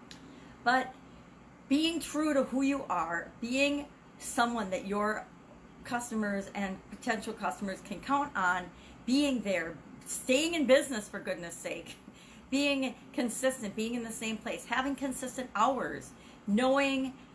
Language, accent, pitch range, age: English, American, 190-240 Hz, 40-59